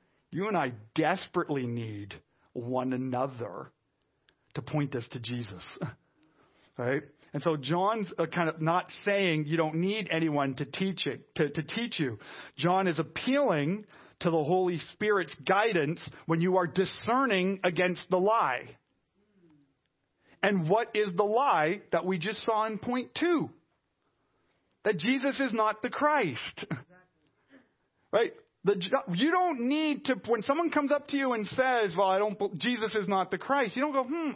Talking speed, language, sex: 155 wpm, English, male